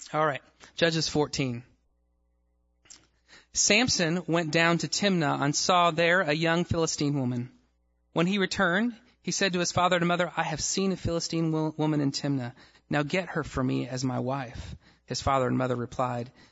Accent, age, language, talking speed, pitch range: American, 30-49, English, 180 wpm, 130-175 Hz